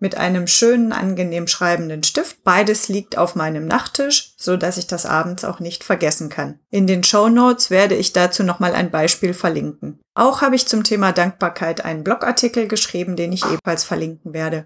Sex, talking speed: female, 185 wpm